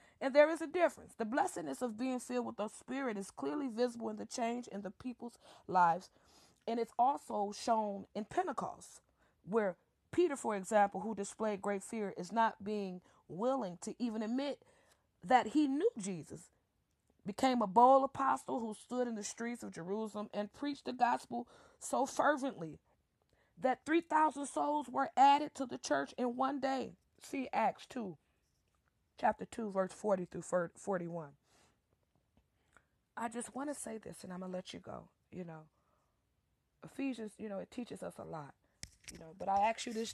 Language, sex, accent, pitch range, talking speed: English, female, American, 185-250 Hz, 170 wpm